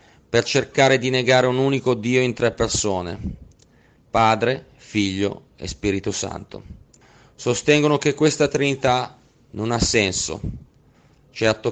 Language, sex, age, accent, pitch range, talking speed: Italian, male, 30-49, native, 100-125 Hz, 120 wpm